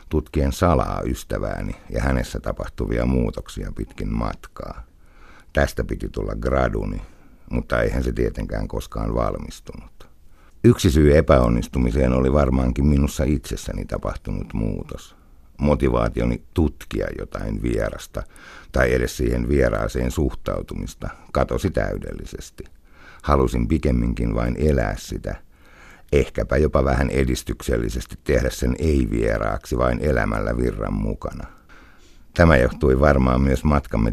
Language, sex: Finnish, male